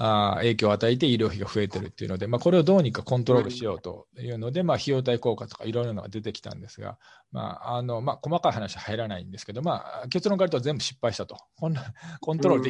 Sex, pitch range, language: male, 110-150 Hz, Japanese